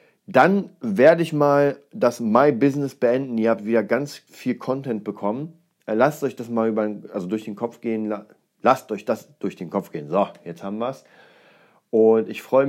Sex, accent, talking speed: male, German, 190 wpm